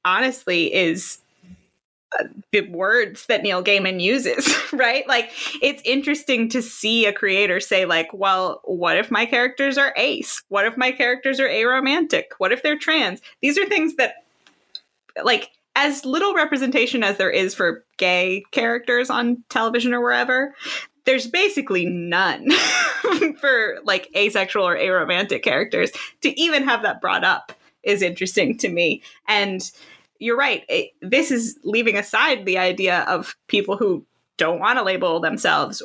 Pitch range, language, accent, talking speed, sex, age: 190-275 Hz, English, American, 150 wpm, female, 20-39